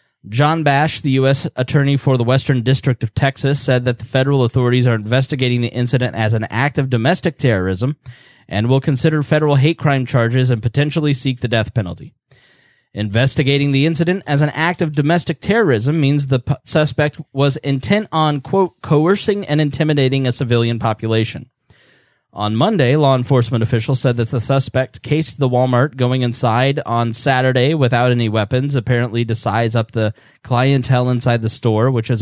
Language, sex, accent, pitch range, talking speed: English, male, American, 120-150 Hz, 170 wpm